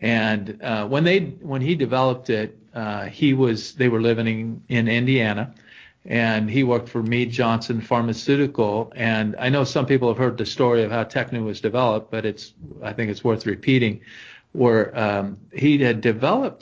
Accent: American